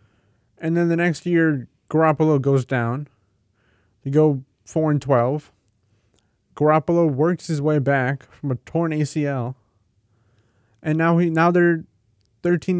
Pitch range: 115-155 Hz